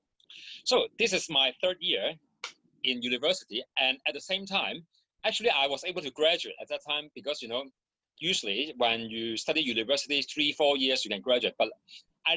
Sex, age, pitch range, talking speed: male, 30-49, 120-165 Hz, 185 wpm